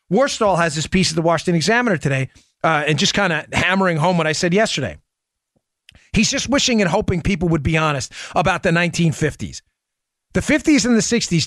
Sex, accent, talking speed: male, American, 195 wpm